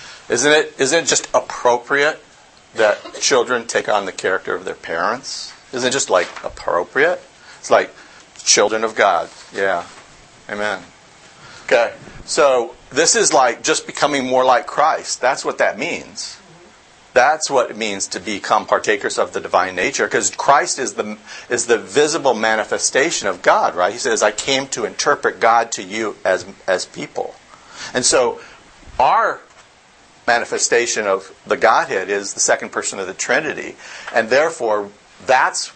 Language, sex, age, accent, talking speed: English, male, 50-69, American, 155 wpm